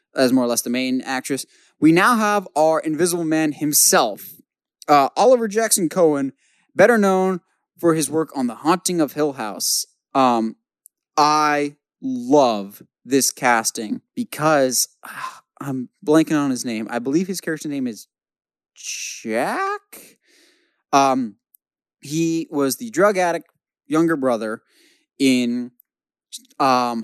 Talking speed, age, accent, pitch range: 130 wpm, 20-39, American, 130-170 Hz